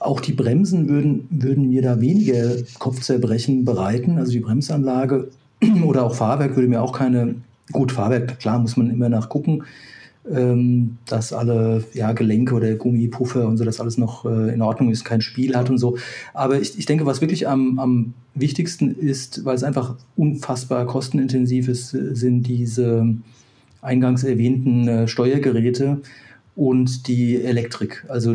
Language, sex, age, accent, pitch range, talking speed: German, male, 40-59, German, 120-135 Hz, 150 wpm